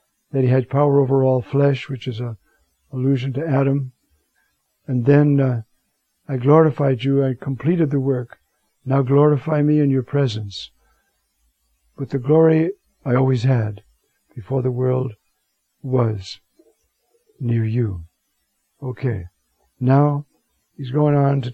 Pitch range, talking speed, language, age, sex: 120-145 Hz, 130 wpm, English, 60-79, male